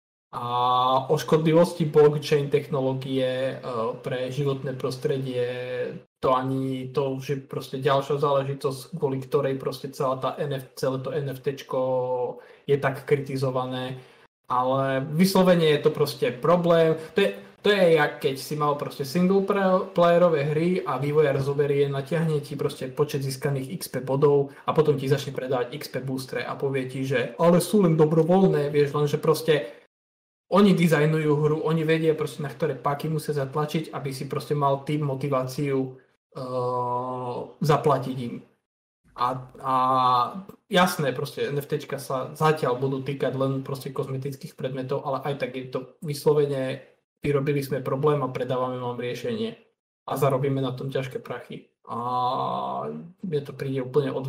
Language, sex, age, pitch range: Slovak, male, 20-39, 130-150 Hz